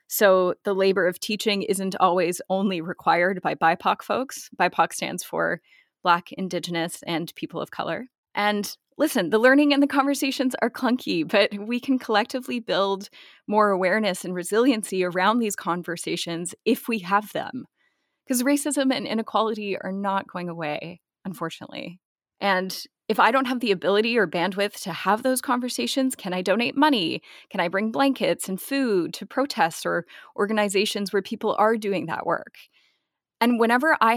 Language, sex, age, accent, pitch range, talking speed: English, female, 20-39, American, 185-245 Hz, 160 wpm